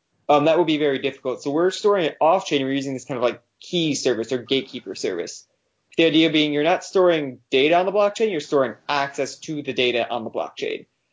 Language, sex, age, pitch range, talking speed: English, male, 20-39, 130-160 Hz, 220 wpm